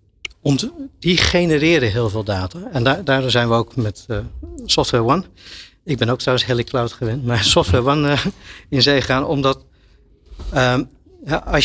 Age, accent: 60-79, Dutch